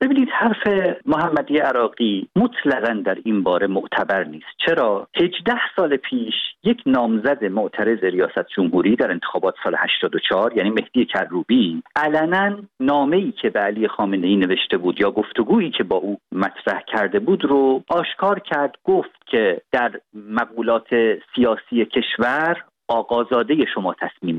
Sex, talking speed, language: male, 130 wpm, Persian